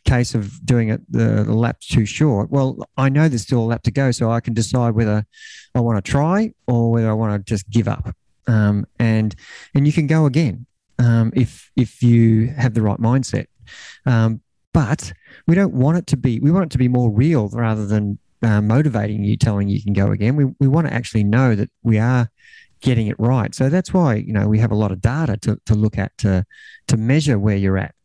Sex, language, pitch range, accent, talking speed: male, English, 110-135 Hz, Australian, 230 wpm